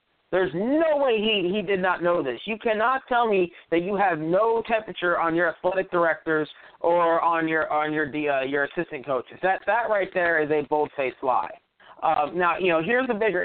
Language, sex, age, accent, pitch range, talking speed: English, male, 40-59, American, 175-225 Hz, 210 wpm